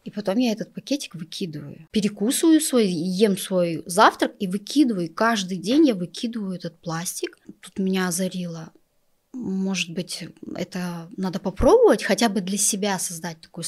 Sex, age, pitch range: female, 20-39, 170-220 Hz